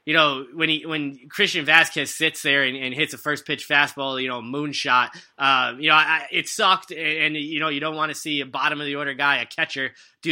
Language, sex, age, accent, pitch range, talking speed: English, male, 20-39, American, 140-160 Hz, 245 wpm